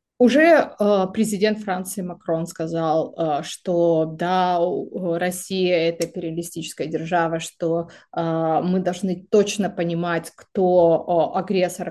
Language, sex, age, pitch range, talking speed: Russian, female, 30-49, 175-225 Hz, 90 wpm